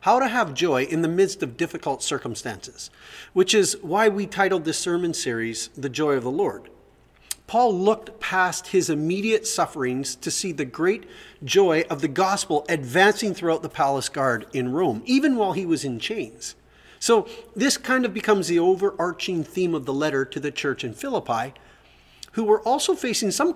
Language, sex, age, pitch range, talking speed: English, male, 40-59, 150-215 Hz, 180 wpm